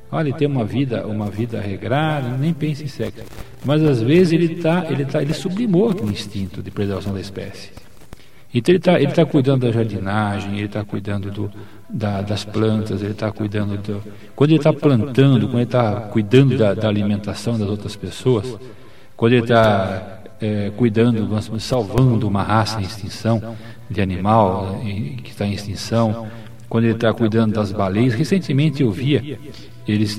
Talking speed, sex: 170 wpm, male